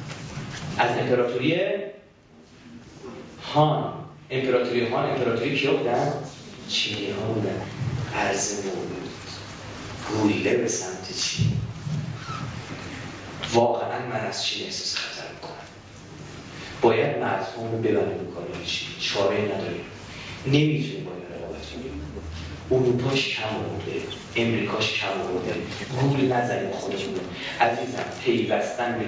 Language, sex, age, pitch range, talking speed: Persian, male, 30-49, 100-130 Hz, 95 wpm